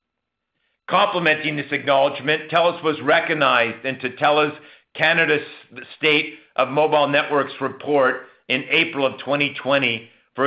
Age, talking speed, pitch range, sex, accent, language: 50-69, 110 wpm, 130-155 Hz, male, American, English